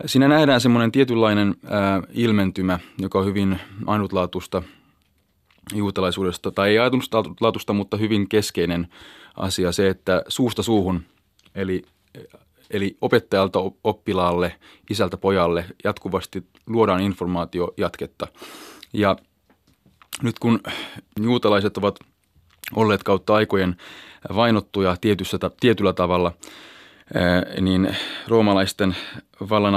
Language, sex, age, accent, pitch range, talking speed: Finnish, male, 30-49, native, 90-105 Hz, 95 wpm